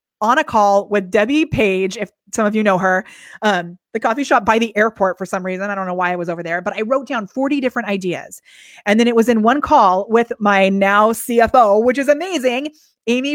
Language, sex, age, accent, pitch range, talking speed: English, female, 30-49, American, 190-235 Hz, 235 wpm